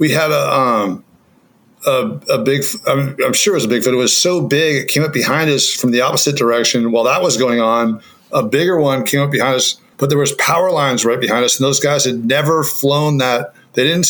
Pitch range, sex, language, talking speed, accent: 125-155 Hz, male, English, 245 wpm, American